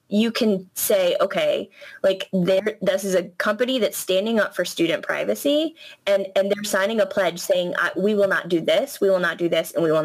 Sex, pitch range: female, 190-265 Hz